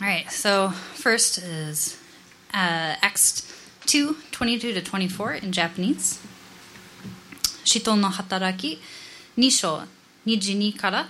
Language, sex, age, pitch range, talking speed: English, female, 20-39, 185-230 Hz, 110 wpm